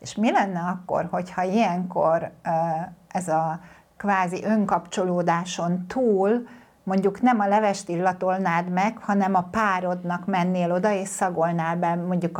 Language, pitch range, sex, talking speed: Hungarian, 180-215 Hz, female, 125 wpm